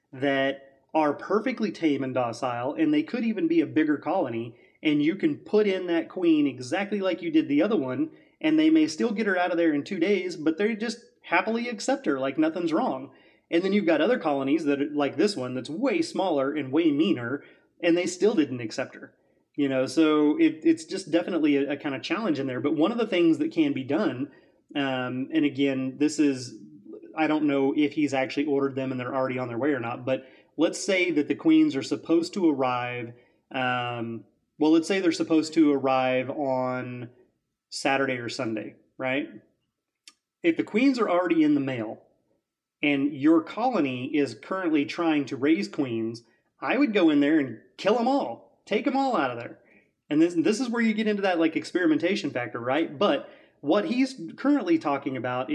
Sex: male